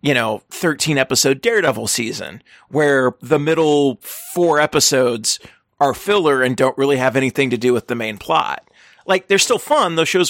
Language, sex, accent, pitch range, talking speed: English, male, American, 125-155 Hz, 175 wpm